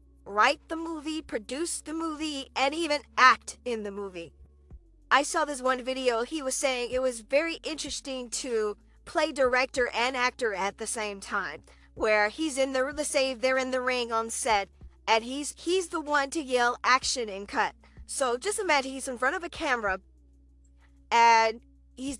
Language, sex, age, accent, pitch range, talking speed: English, female, 40-59, American, 220-290 Hz, 180 wpm